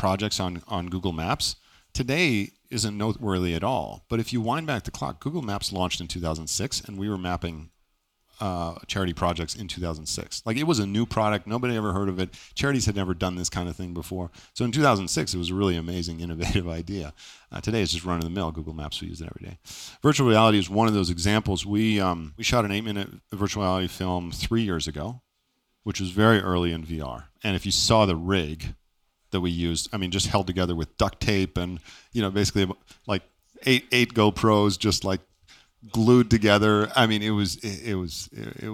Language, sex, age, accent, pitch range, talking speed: English, male, 40-59, American, 85-110 Hz, 210 wpm